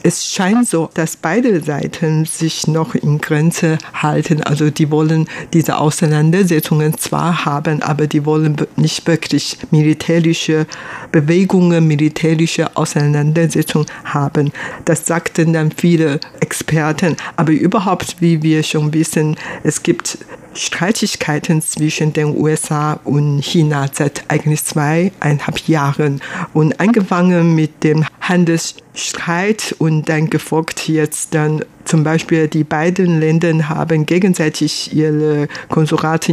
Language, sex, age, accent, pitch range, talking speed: German, female, 60-79, German, 150-165 Hz, 115 wpm